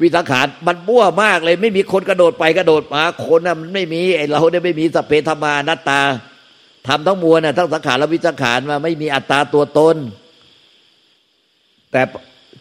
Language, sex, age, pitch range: Thai, male, 60-79, 115-155 Hz